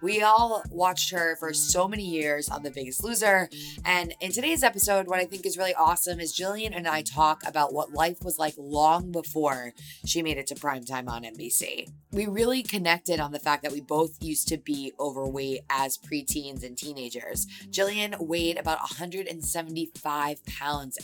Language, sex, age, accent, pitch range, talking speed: English, female, 20-39, American, 145-175 Hz, 180 wpm